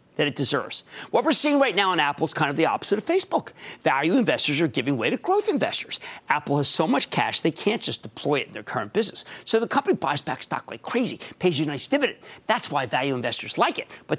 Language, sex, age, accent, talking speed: English, male, 40-59, American, 250 wpm